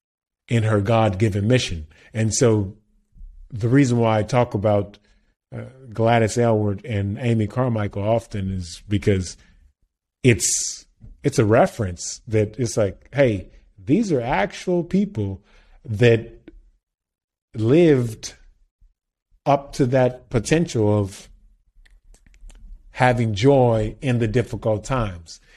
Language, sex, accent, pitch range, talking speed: English, male, American, 105-130 Hz, 110 wpm